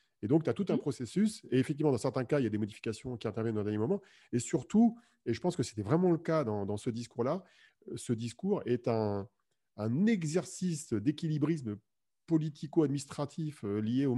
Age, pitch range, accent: 40-59, 115-155 Hz, French